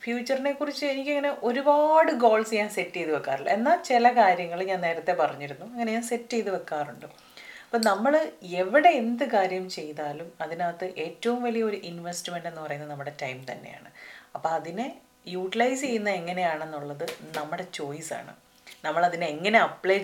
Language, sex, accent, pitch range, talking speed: Malayalam, female, native, 155-205 Hz, 130 wpm